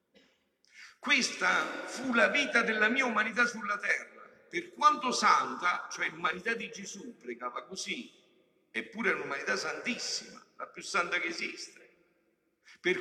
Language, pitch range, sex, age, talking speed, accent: Italian, 175-265 Hz, male, 50-69, 130 wpm, native